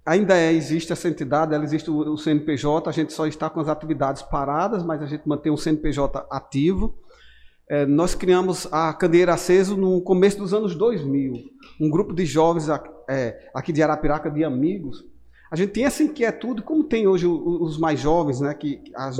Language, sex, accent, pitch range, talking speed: Portuguese, male, Brazilian, 150-195 Hz, 185 wpm